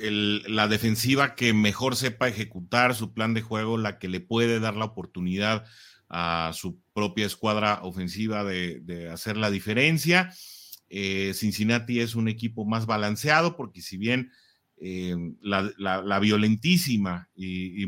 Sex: male